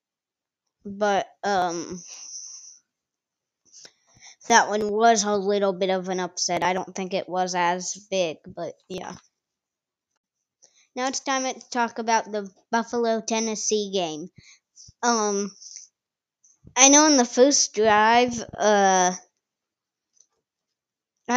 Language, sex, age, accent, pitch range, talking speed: English, female, 20-39, American, 200-245 Hz, 105 wpm